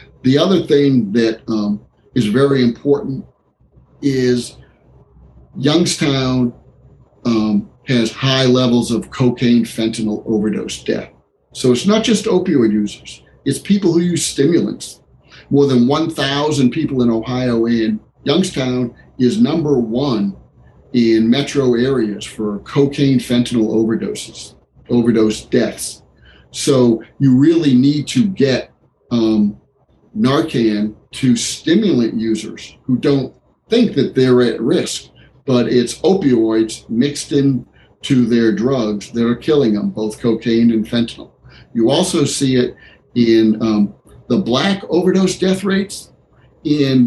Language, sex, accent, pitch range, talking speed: English, male, American, 115-140 Hz, 120 wpm